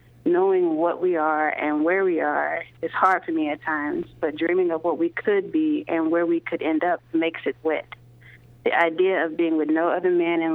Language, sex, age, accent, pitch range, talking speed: English, female, 30-49, American, 160-195 Hz, 220 wpm